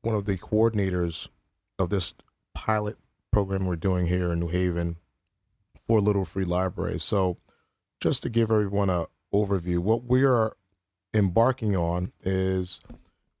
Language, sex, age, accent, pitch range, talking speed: English, male, 30-49, American, 90-105 Hz, 140 wpm